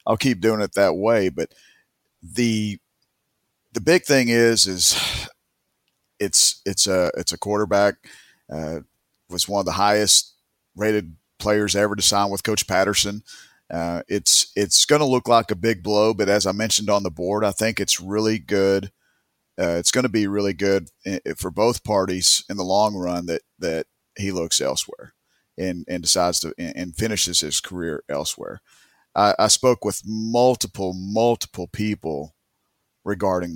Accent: American